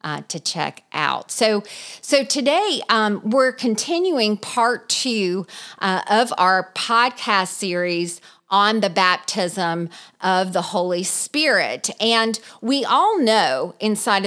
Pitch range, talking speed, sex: 175-215 Hz, 120 wpm, female